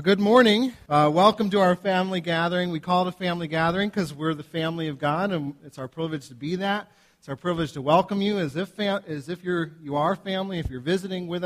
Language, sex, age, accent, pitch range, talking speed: English, male, 40-59, American, 150-185 Hz, 235 wpm